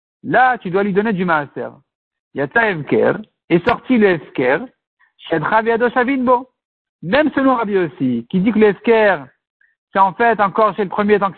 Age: 60-79